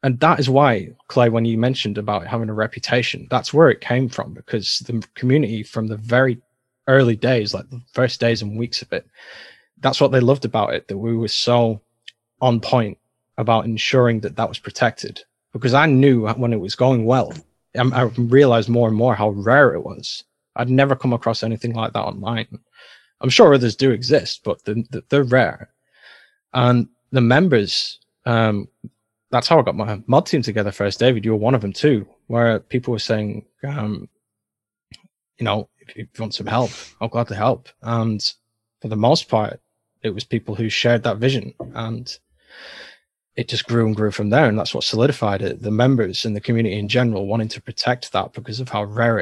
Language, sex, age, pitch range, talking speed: English, male, 20-39, 110-125 Hz, 200 wpm